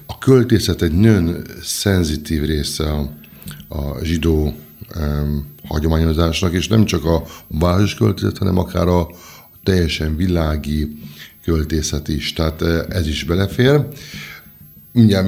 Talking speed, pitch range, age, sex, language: 110 wpm, 80-100 Hz, 50-69, male, Hungarian